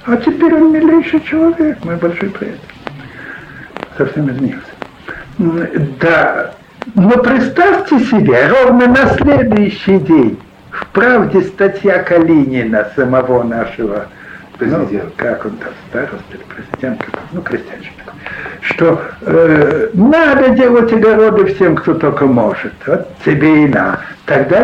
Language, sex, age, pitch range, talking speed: Russian, male, 60-79, 155-220 Hz, 105 wpm